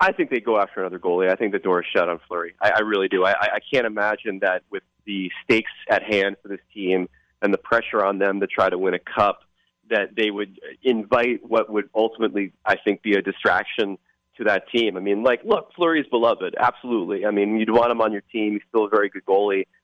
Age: 30-49